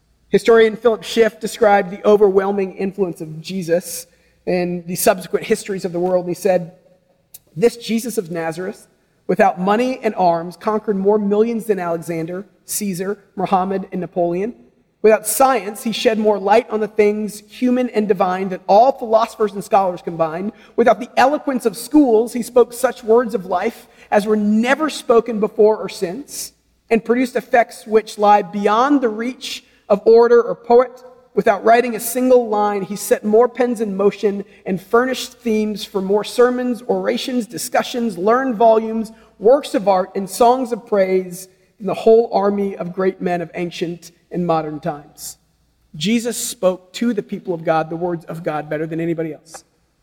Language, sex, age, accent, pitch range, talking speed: English, male, 40-59, American, 185-235 Hz, 165 wpm